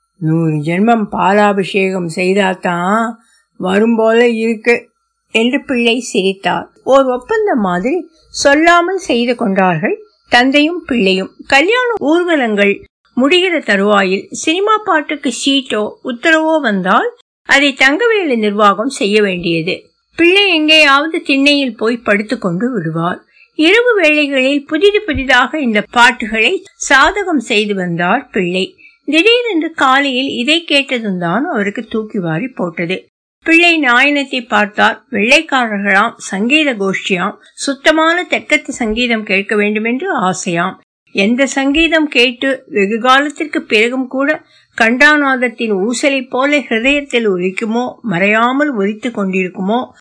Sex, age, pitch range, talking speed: female, 60-79, 205-290 Hz, 95 wpm